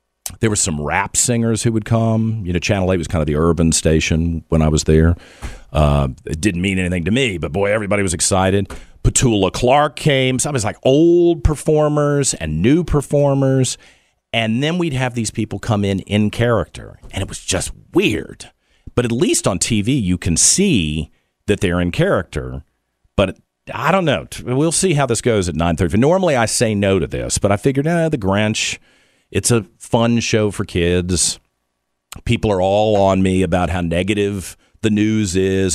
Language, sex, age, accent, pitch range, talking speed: English, male, 50-69, American, 85-120 Hz, 195 wpm